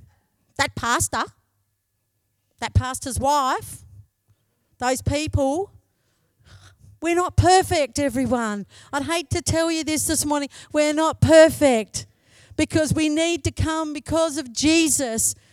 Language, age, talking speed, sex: English, 50-69, 115 wpm, female